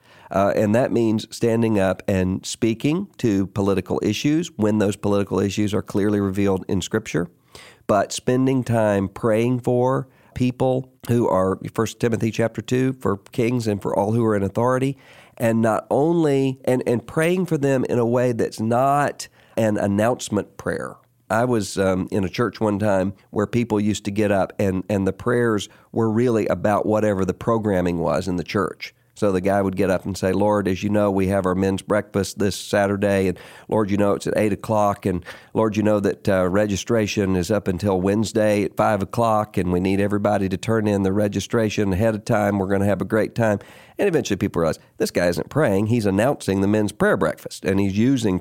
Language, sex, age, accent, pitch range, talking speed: English, male, 50-69, American, 100-120 Hz, 200 wpm